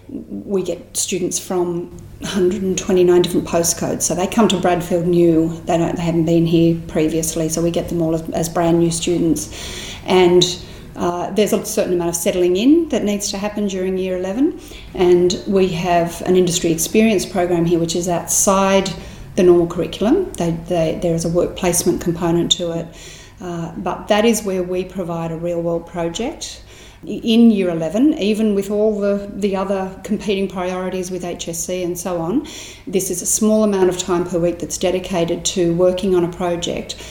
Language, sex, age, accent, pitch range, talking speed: English, female, 40-59, Australian, 170-190 Hz, 180 wpm